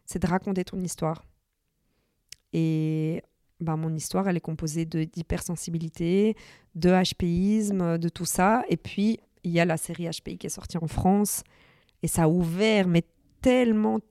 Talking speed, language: 160 wpm, French